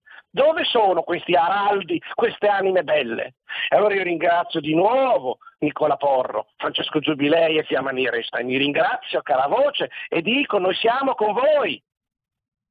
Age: 50-69